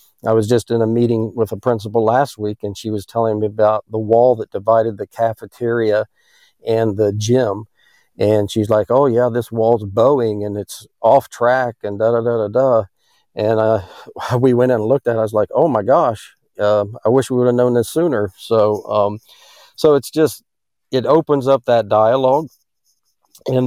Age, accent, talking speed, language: 50-69, American, 200 wpm, English